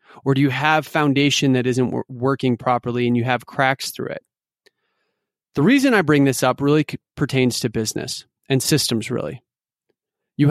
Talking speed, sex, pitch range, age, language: 165 wpm, male, 130-165 Hz, 30-49, English